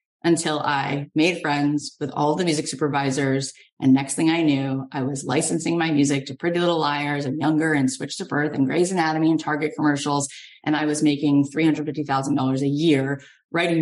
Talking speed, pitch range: 185 wpm, 145-180 Hz